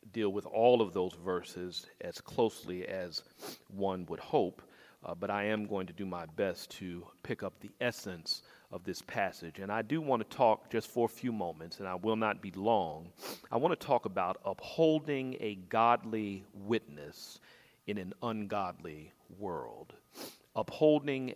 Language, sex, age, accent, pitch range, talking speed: English, male, 40-59, American, 95-125 Hz, 170 wpm